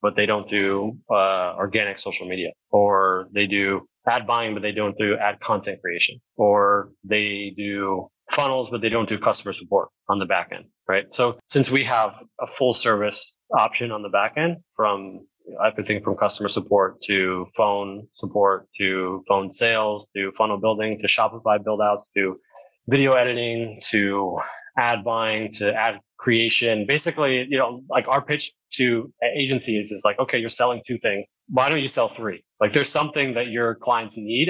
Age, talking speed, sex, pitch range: 20-39, 175 wpm, male, 100-120 Hz